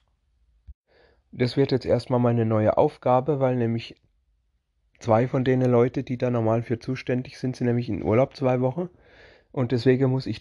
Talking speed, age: 165 wpm, 30-49